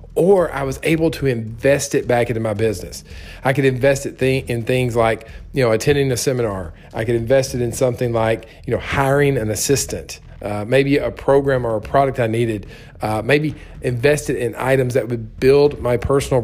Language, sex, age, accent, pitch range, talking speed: English, male, 40-59, American, 115-140 Hz, 205 wpm